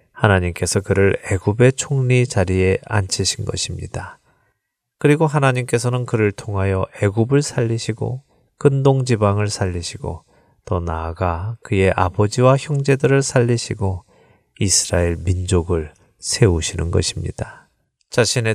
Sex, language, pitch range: male, Korean, 95-125 Hz